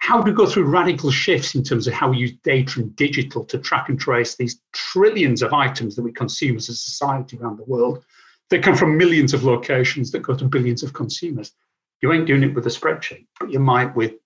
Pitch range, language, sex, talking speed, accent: 125-155 Hz, English, male, 235 wpm, British